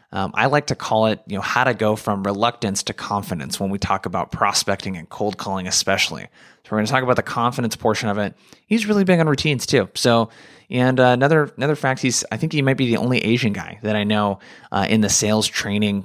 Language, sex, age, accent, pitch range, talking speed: English, male, 20-39, American, 105-125 Hz, 245 wpm